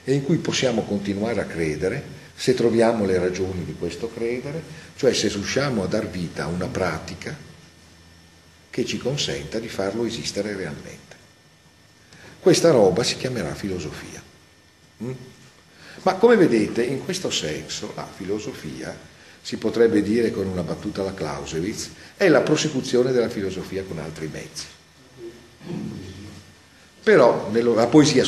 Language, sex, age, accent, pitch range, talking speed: Italian, male, 40-59, native, 90-135 Hz, 130 wpm